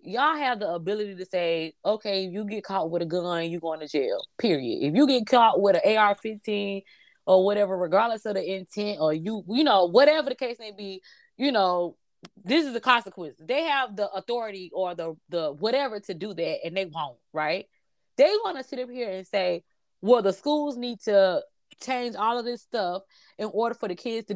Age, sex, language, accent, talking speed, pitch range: 20-39, female, English, American, 210 wpm, 185-250 Hz